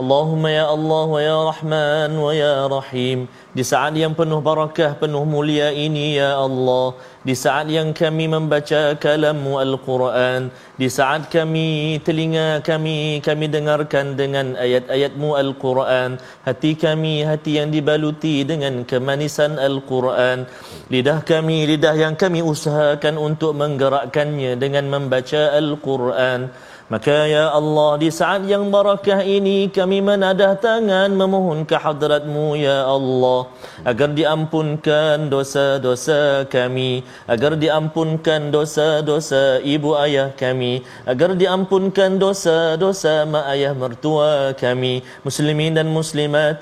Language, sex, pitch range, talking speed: Malayalam, male, 135-155 Hz, 110 wpm